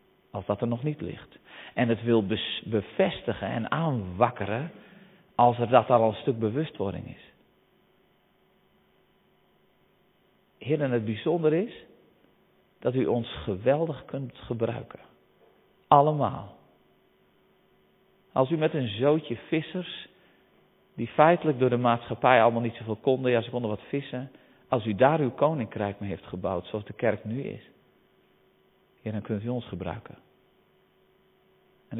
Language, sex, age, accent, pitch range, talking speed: Dutch, male, 40-59, Dutch, 105-135 Hz, 135 wpm